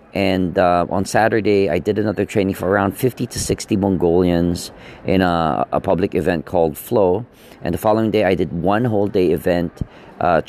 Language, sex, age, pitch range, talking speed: English, male, 40-59, 85-105 Hz, 185 wpm